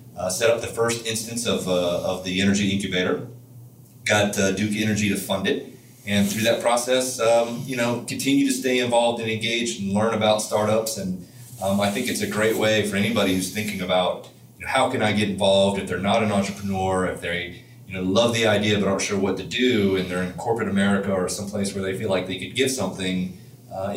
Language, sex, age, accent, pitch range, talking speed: English, male, 30-49, American, 95-120 Hz, 225 wpm